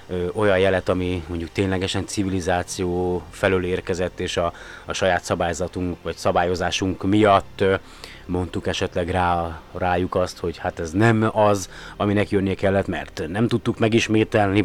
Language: Hungarian